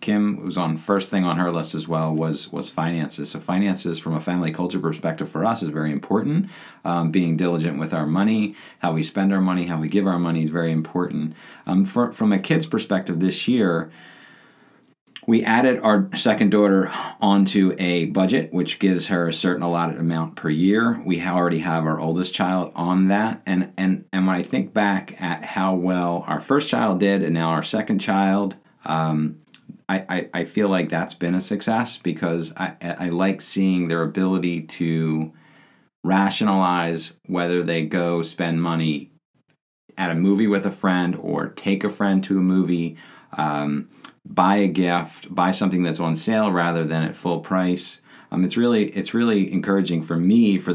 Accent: American